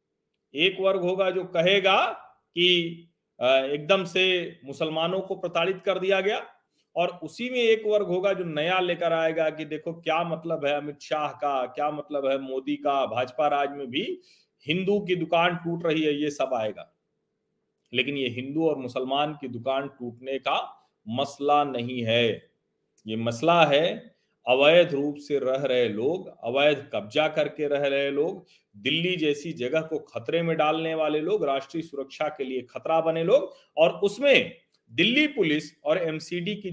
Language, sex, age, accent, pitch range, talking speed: Hindi, male, 40-59, native, 145-185 Hz, 165 wpm